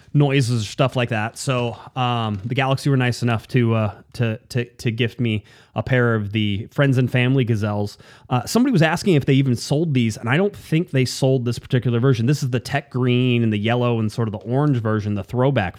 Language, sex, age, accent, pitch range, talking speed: English, male, 30-49, American, 105-125 Hz, 230 wpm